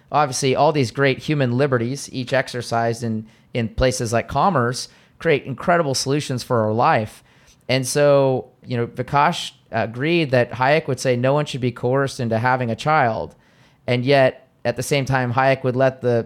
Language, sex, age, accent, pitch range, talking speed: English, male, 30-49, American, 115-135 Hz, 175 wpm